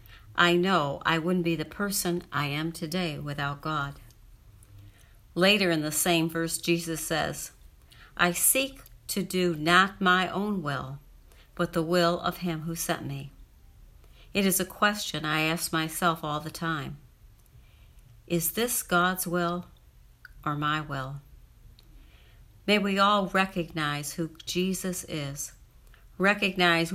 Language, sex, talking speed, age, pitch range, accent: English, female, 135 wpm, 60-79, 145-180 Hz, American